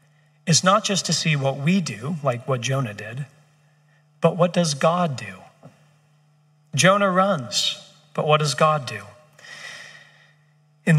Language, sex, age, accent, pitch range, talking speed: English, male, 40-59, American, 150-175 Hz, 135 wpm